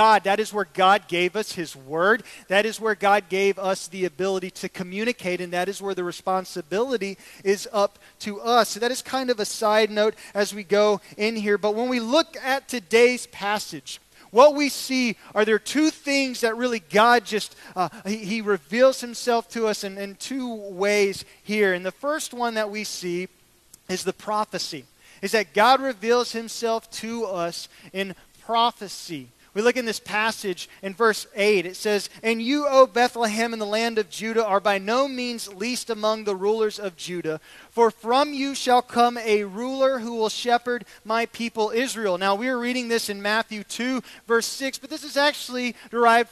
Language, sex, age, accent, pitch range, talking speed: English, male, 30-49, American, 200-245 Hz, 190 wpm